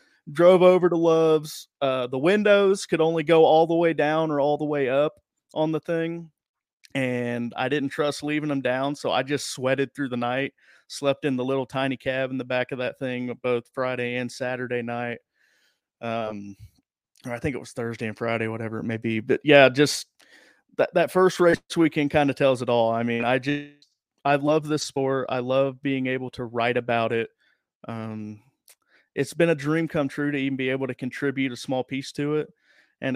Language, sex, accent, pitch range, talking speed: English, male, American, 120-145 Hz, 205 wpm